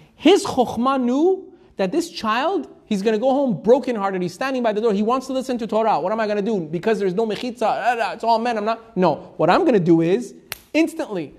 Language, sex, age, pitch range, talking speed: English, male, 30-49, 205-260 Hz, 250 wpm